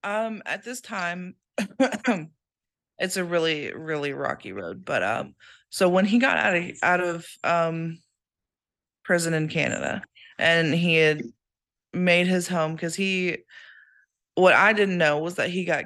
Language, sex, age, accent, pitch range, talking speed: English, female, 20-39, American, 145-175 Hz, 150 wpm